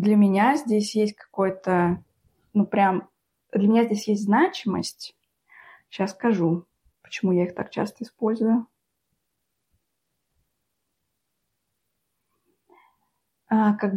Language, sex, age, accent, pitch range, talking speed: Russian, female, 20-39, native, 180-220 Hz, 90 wpm